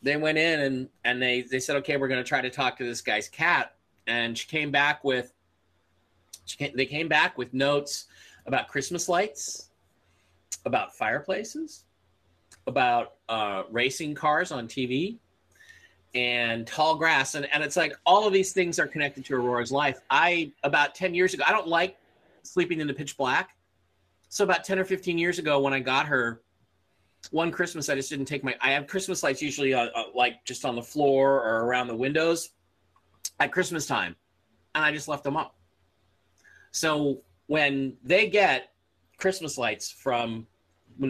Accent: American